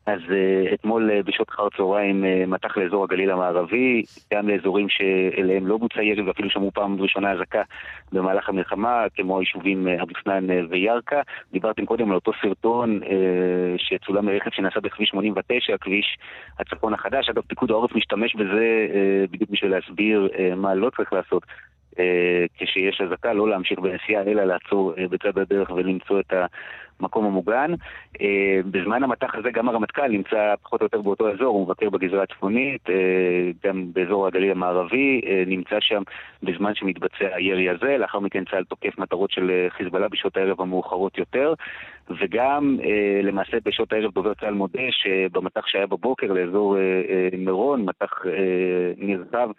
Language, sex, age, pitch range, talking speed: Hebrew, male, 30-49, 95-100 Hz, 140 wpm